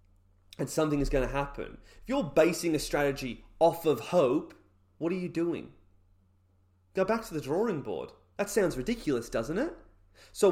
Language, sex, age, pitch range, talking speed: English, male, 30-49, 105-170 Hz, 170 wpm